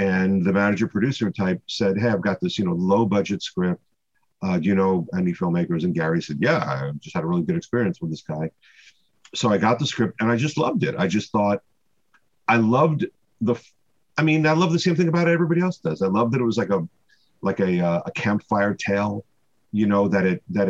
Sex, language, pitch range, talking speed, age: male, English, 100-155 Hz, 230 wpm, 50-69